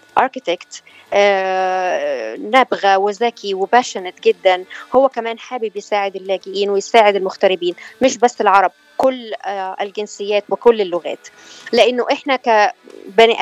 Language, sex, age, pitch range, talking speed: Arabic, female, 20-39, 200-235 Hz, 105 wpm